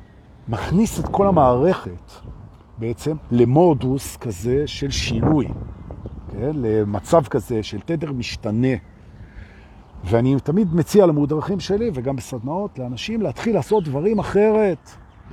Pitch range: 115-185 Hz